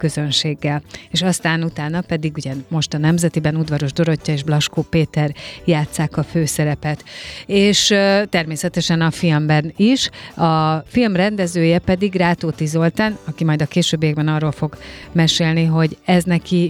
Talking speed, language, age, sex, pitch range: 140 wpm, Hungarian, 30-49, female, 150-180 Hz